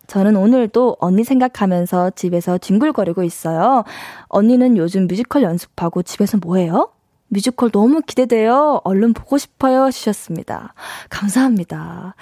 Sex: female